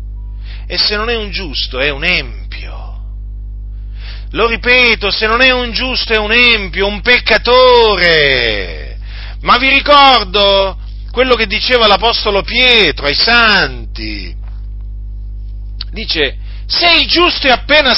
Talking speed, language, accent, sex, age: 125 wpm, Italian, native, male, 40-59